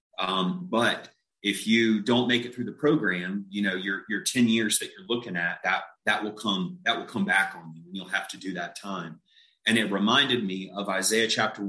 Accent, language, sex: American, English, male